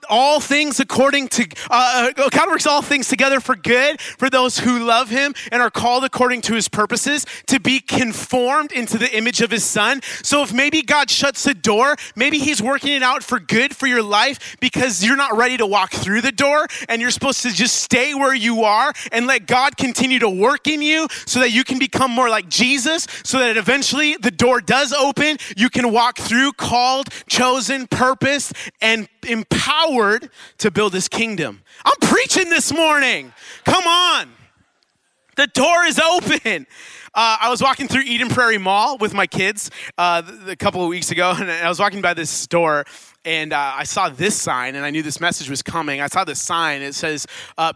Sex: male